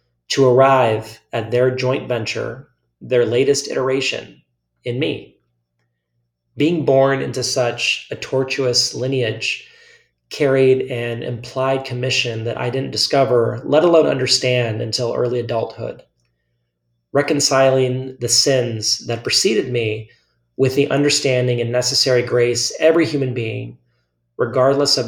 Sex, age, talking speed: male, 30-49, 115 wpm